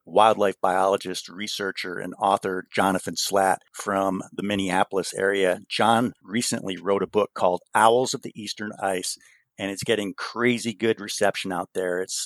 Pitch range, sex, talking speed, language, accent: 95-110 Hz, male, 150 wpm, English, American